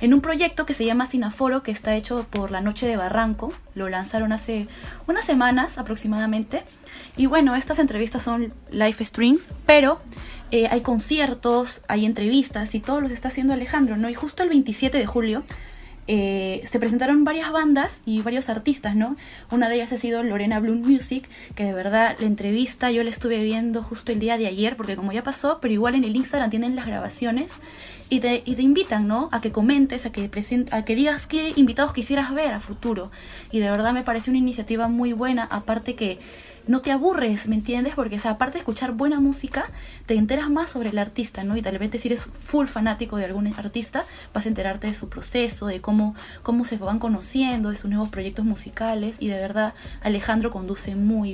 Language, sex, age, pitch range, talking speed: Spanish, female, 20-39, 210-260 Hz, 205 wpm